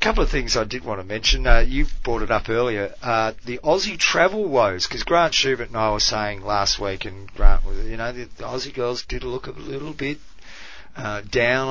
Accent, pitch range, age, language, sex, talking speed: Australian, 100-125 Hz, 30-49, English, male, 220 wpm